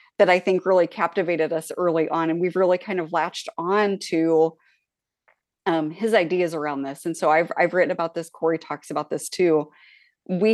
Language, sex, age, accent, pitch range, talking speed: English, female, 30-49, American, 165-210 Hz, 195 wpm